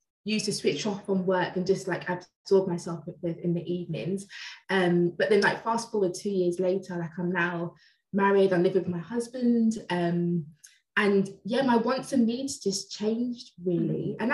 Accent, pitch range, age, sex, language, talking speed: British, 175-200 Hz, 20-39, female, English, 190 wpm